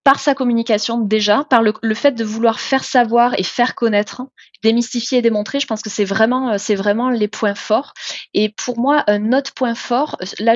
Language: French